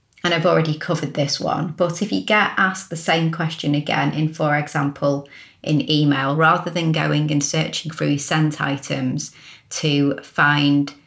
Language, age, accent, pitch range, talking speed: English, 30-49, British, 145-170 Hz, 165 wpm